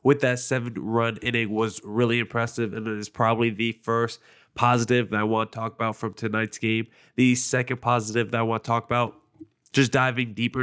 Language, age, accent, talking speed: English, 20-39, American, 200 wpm